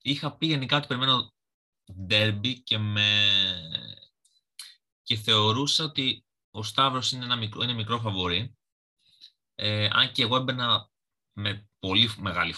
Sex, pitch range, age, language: male, 90-115 Hz, 20-39, Greek